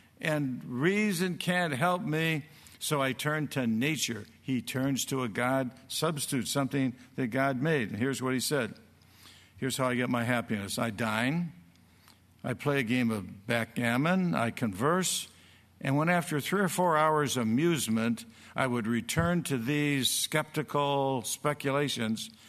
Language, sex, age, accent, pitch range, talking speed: English, male, 60-79, American, 120-170 Hz, 150 wpm